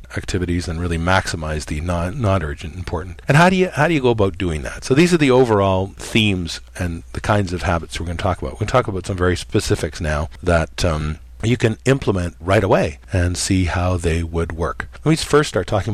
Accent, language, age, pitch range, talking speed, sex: American, English, 50-69, 80-100 Hz, 235 wpm, male